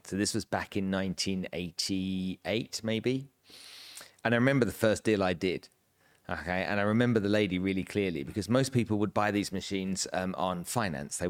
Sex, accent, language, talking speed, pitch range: male, British, English, 180 wpm, 95-115 Hz